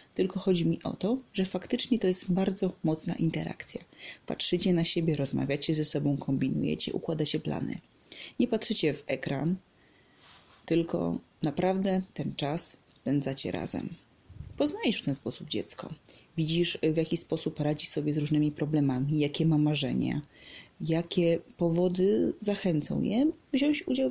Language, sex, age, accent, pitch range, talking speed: Polish, female, 30-49, native, 155-200 Hz, 135 wpm